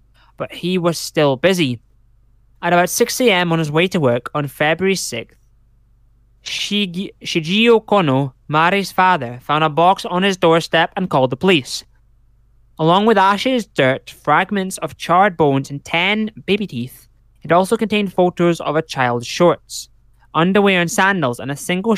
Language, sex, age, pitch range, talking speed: English, male, 20-39, 120-180 Hz, 155 wpm